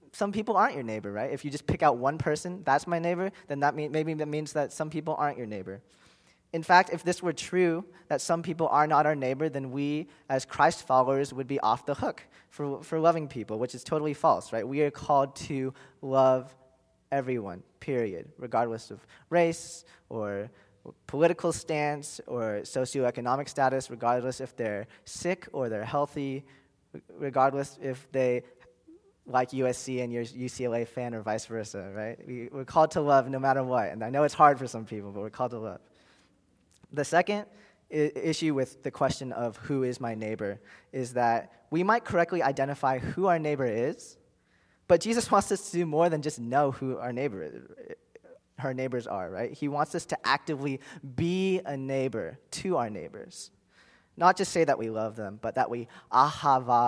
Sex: male